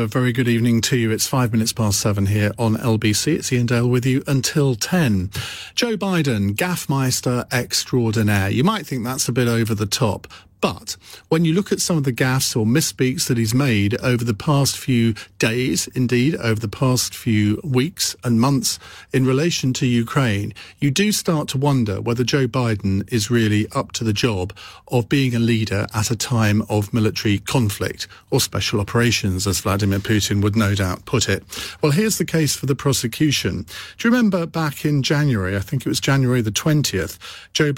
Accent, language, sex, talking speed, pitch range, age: British, English, male, 190 wpm, 110-135 Hz, 40-59